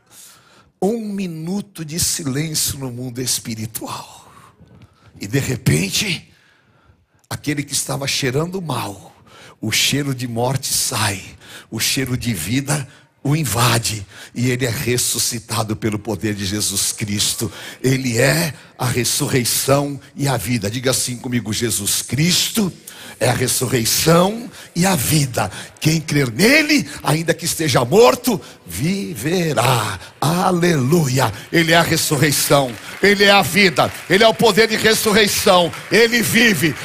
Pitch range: 130-195 Hz